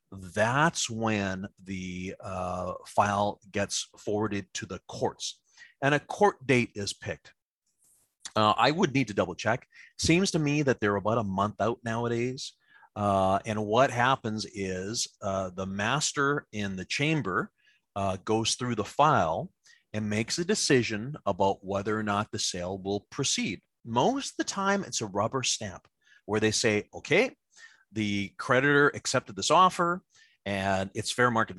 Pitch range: 105-160 Hz